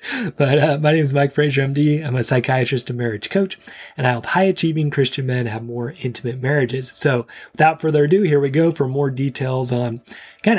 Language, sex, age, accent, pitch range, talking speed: English, male, 30-49, American, 120-150 Hz, 205 wpm